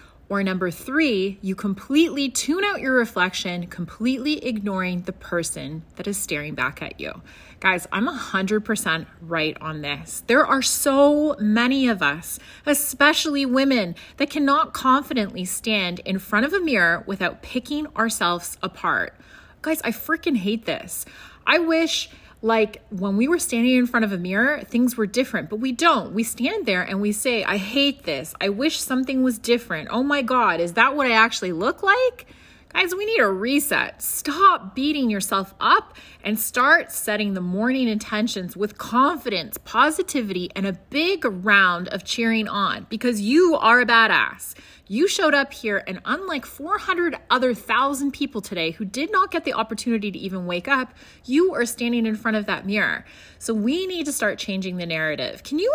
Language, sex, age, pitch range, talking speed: English, female, 30-49, 195-280 Hz, 175 wpm